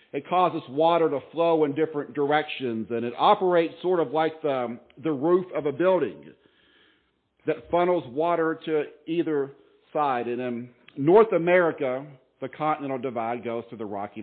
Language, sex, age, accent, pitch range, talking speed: English, male, 50-69, American, 130-170 Hz, 155 wpm